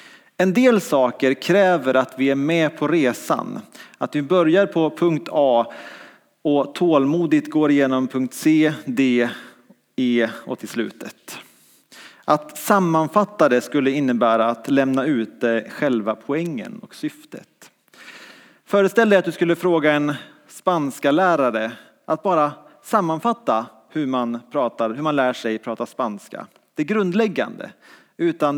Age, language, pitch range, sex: 30-49, English, 130-185 Hz, male